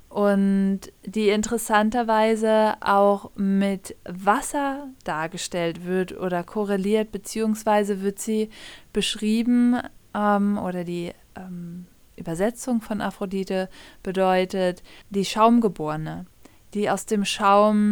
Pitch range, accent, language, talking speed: 185-215 Hz, German, German, 95 wpm